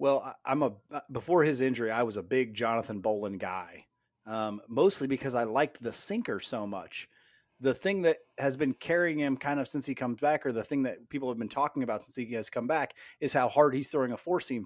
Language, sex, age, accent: English, male, 30-49, American